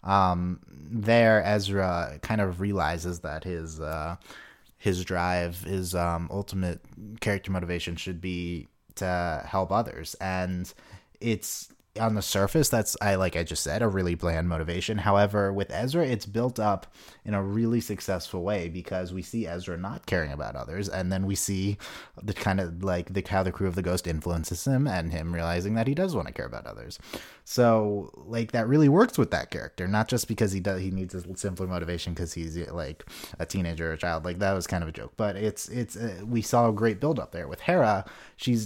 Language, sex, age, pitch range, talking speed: English, male, 30-49, 90-110 Hz, 200 wpm